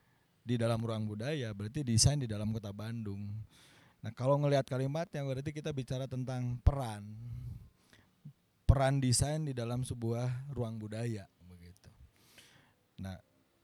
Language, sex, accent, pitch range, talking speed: Indonesian, male, native, 110-135 Hz, 130 wpm